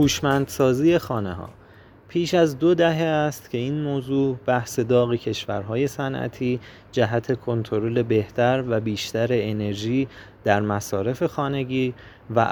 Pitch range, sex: 110-130 Hz, male